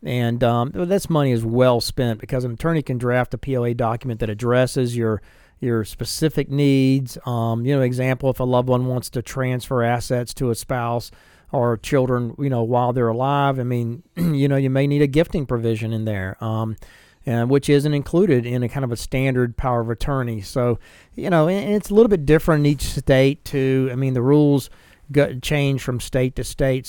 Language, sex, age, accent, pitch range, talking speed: English, male, 40-59, American, 120-140 Hz, 200 wpm